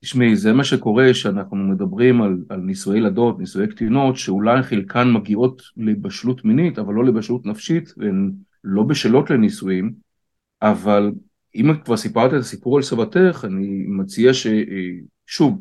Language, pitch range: Hebrew, 115-150 Hz